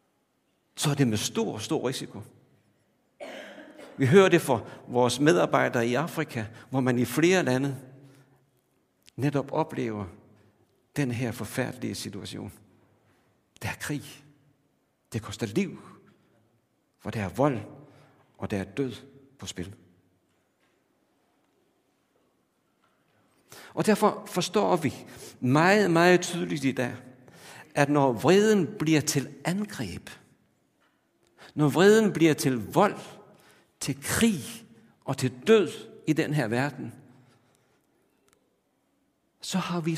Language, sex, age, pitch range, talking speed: Danish, male, 60-79, 115-150 Hz, 110 wpm